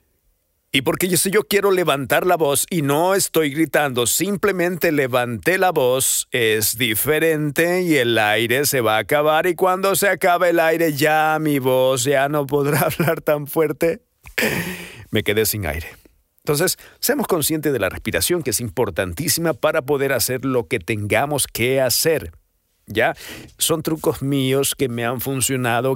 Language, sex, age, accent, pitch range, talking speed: Spanish, male, 50-69, Mexican, 115-160 Hz, 160 wpm